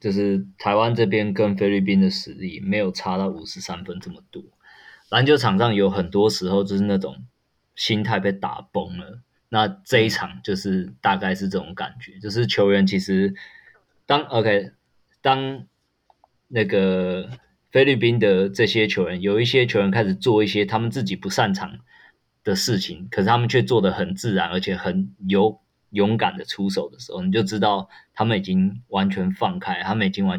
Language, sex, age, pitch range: Chinese, male, 20-39, 95-115 Hz